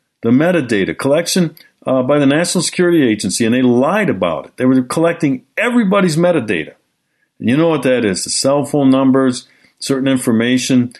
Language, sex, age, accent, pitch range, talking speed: English, male, 50-69, American, 125-180 Hz, 165 wpm